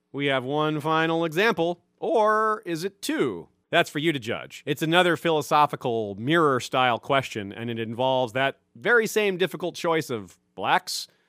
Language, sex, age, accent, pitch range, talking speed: English, male, 40-59, American, 130-170 Hz, 155 wpm